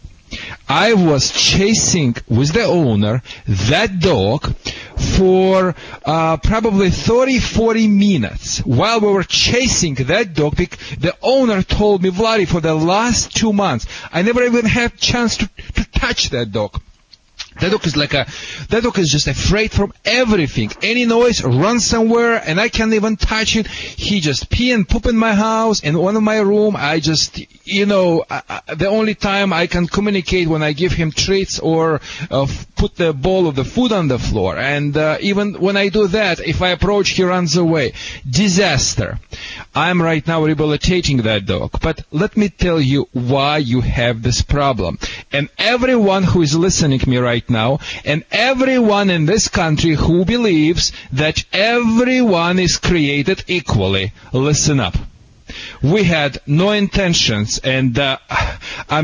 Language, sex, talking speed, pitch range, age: English, male, 165 wpm, 135-200 Hz, 40-59